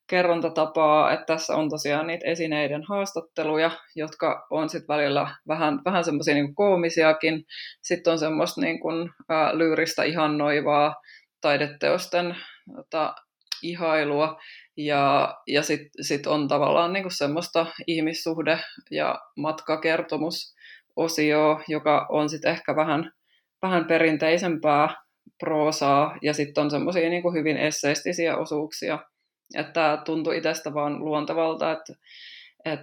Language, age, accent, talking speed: Finnish, 20-39, native, 115 wpm